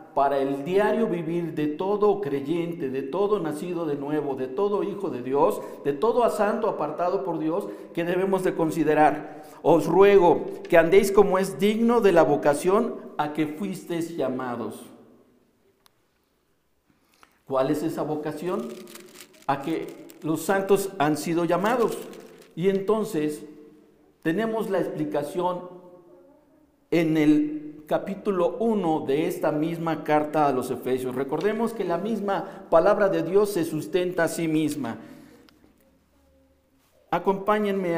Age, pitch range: 50-69, 150-195 Hz